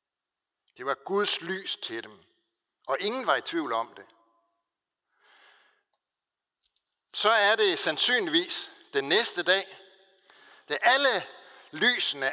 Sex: male